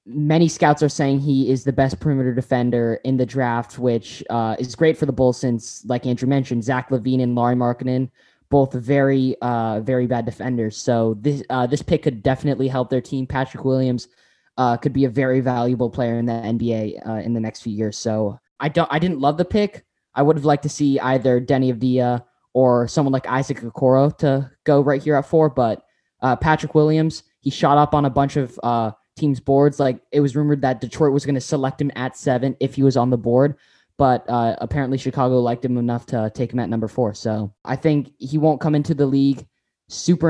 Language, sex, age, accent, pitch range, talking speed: English, male, 10-29, American, 120-140 Hz, 220 wpm